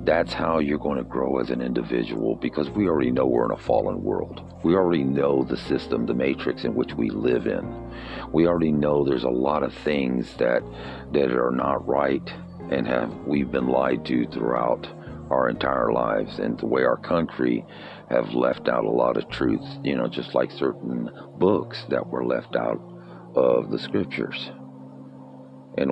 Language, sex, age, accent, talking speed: English, male, 50-69, American, 185 wpm